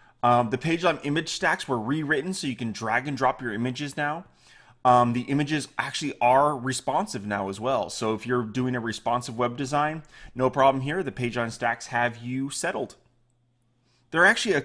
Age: 30-49